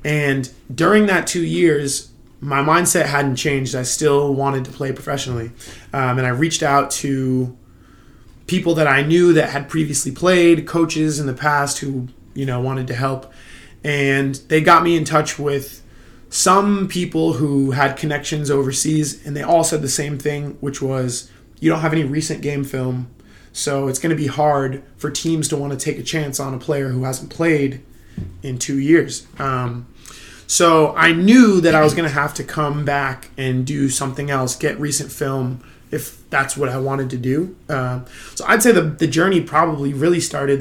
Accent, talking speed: American, 190 wpm